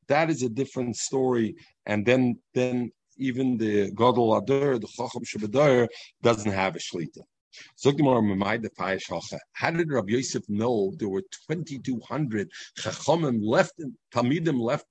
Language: English